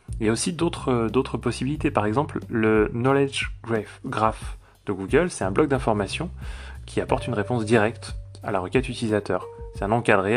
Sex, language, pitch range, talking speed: male, French, 95-115 Hz, 170 wpm